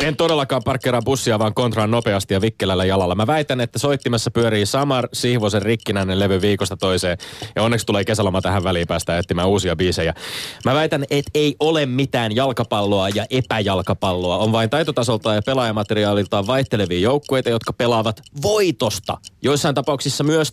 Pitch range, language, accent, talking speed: 110-150 Hz, Finnish, native, 155 wpm